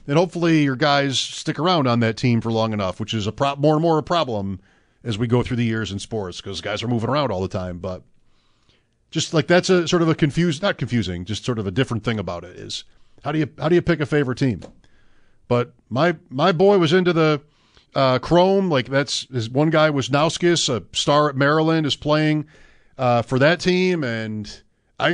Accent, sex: American, male